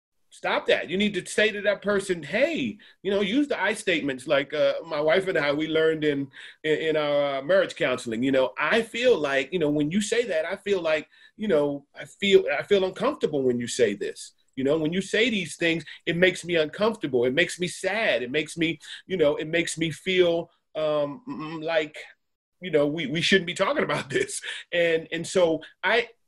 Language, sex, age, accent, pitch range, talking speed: English, male, 40-59, American, 145-195 Hz, 215 wpm